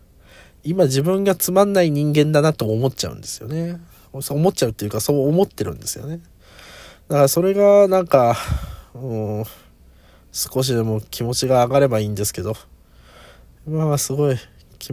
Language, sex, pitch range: Japanese, male, 95-155 Hz